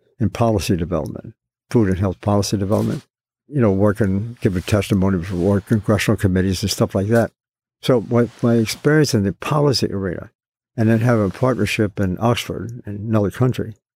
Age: 60-79